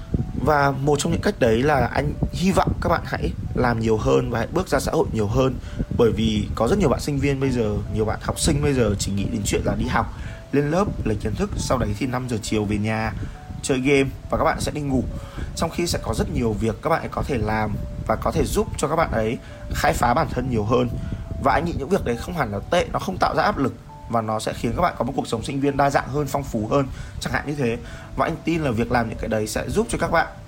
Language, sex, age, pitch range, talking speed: Vietnamese, male, 20-39, 105-135 Hz, 285 wpm